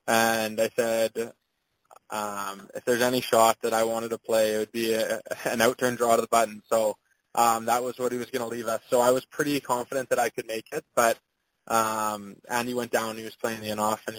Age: 20-39